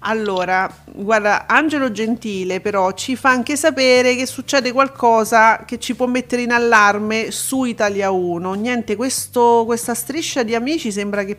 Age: 40-59